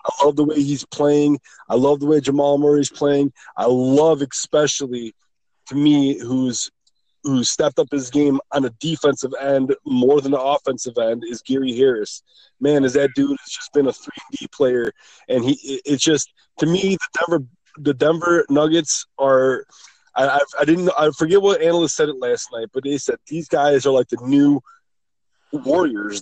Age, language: 20-39, English